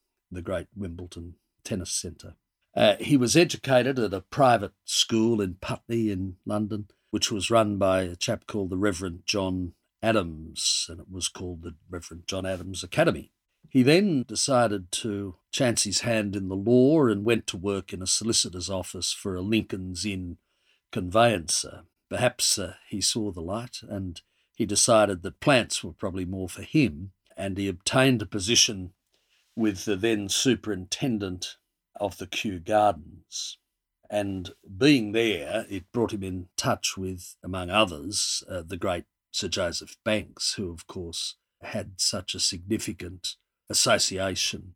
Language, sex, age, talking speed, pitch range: English, male, 50-69, 150 wpm, 90-110 Hz